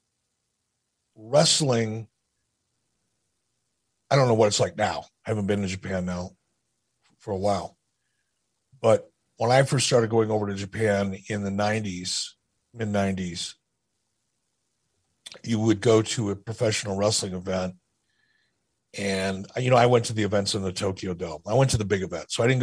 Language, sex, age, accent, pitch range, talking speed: English, male, 50-69, American, 95-115 Hz, 155 wpm